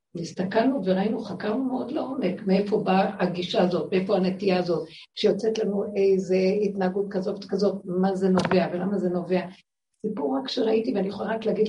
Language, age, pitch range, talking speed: Hebrew, 60-79, 185-225 Hz, 160 wpm